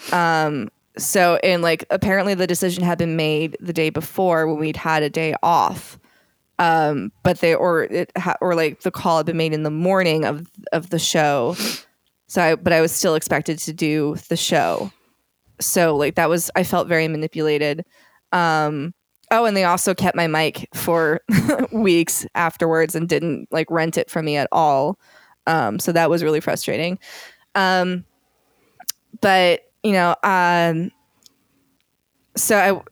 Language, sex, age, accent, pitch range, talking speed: English, female, 20-39, American, 160-190 Hz, 165 wpm